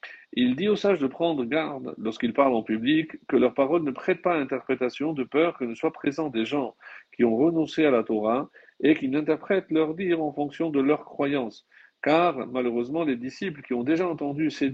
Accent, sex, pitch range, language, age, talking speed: French, male, 125-160 Hz, French, 40-59, 210 wpm